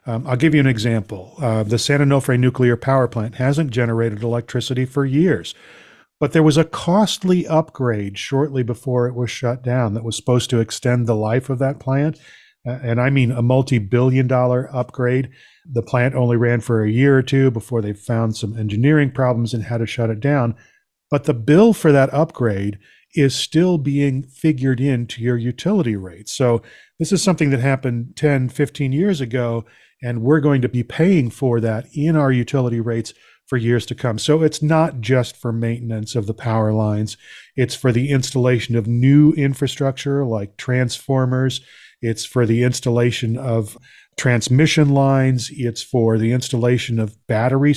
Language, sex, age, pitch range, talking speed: English, male, 40-59, 120-145 Hz, 175 wpm